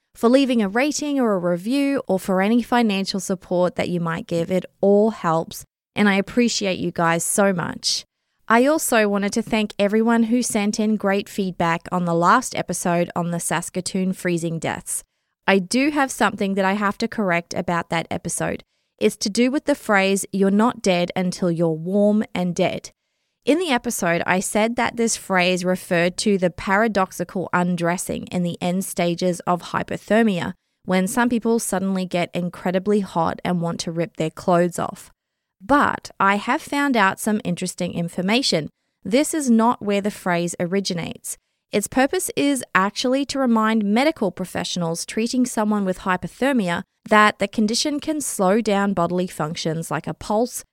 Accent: Australian